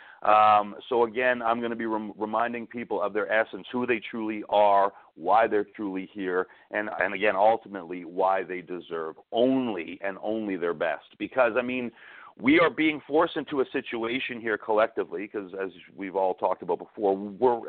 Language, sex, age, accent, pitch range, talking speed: English, male, 40-59, American, 95-120 Hz, 180 wpm